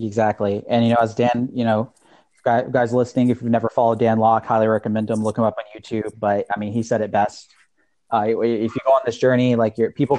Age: 30-49